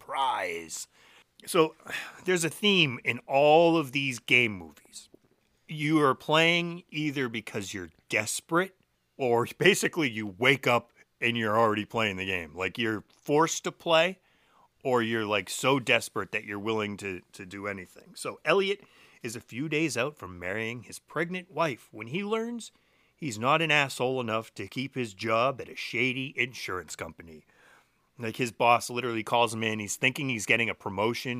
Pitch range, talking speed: 105-150 Hz, 170 wpm